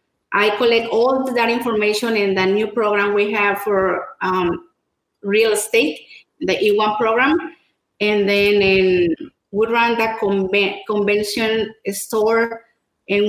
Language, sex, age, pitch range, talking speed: English, female, 30-49, 200-230 Hz, 130 wpm